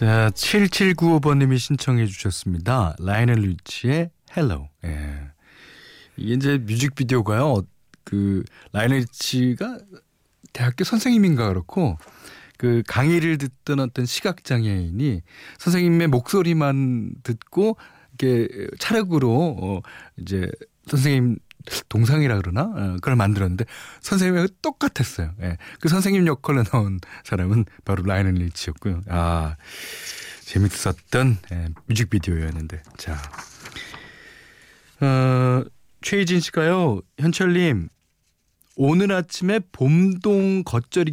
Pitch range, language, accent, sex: 90-145 Hz, Korean, native, male